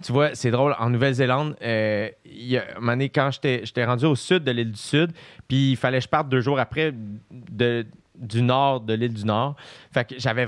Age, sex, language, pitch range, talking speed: 30-49, male, French, 125-155 Hz, 225 wpm